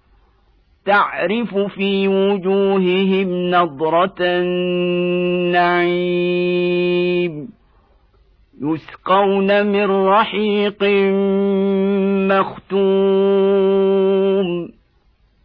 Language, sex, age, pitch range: Arabic, male, 50-69, 175-195 Hz